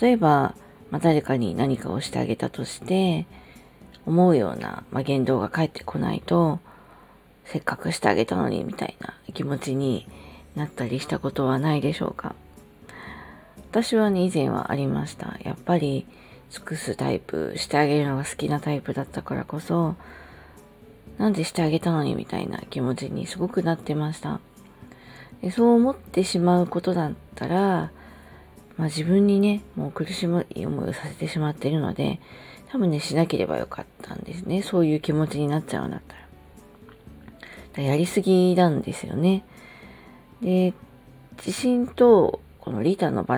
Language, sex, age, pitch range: Japanese, female, 40-59, 140-190 Hz